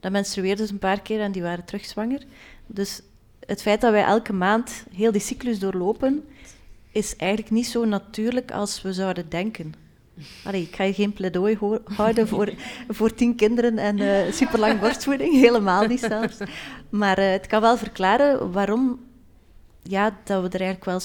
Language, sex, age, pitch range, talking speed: Dutch, female, 30-49, 190-220 Hz, 180 wpm